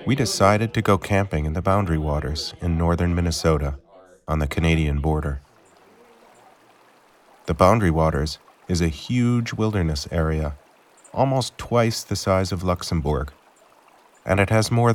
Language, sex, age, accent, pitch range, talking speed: Italian, male, 40-59, American, 80-100 Hz, 135 wpm